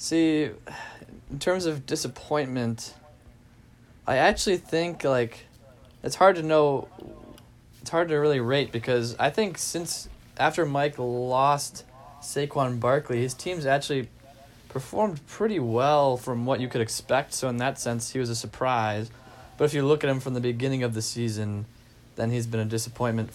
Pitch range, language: 115-135 Hz, English